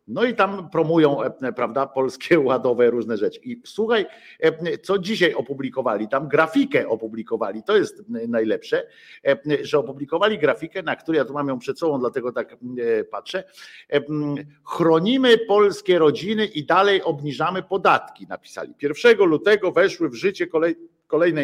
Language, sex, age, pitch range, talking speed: Polish, male, 50-69, 145-220 Hz, 135 wpm